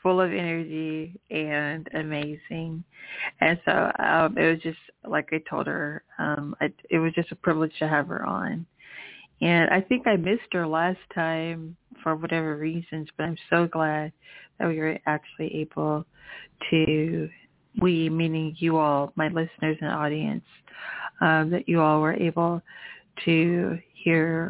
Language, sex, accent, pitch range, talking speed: English, female, American, 160-180 Hz, 155 wpm